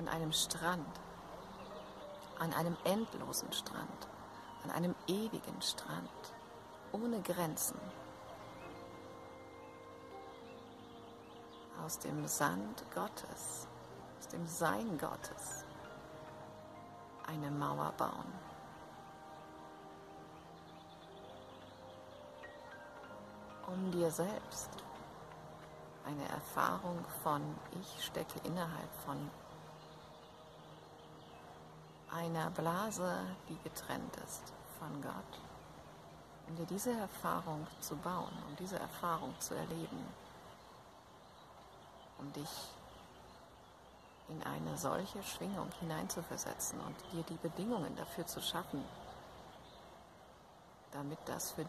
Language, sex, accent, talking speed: German, female, German, 80 wpm